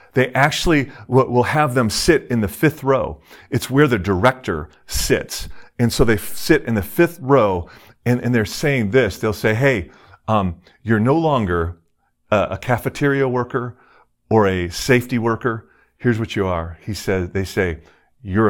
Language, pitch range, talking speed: English, 90-125 Hz, 165 wpm